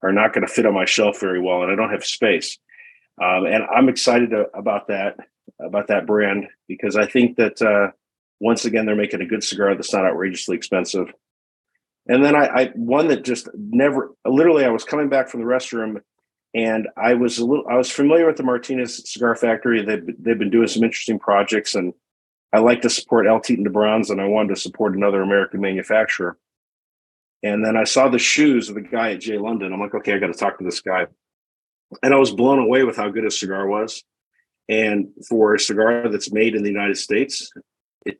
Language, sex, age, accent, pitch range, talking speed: English, male, 50-69, American, 105-125 Hz, 215 wpm